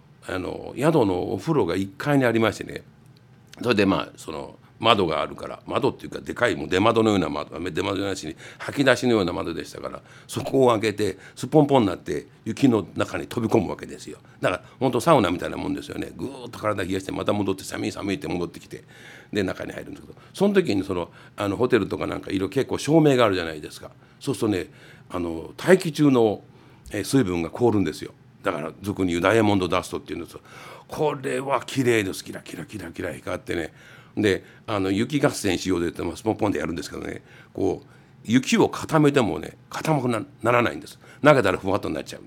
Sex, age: male, 60-79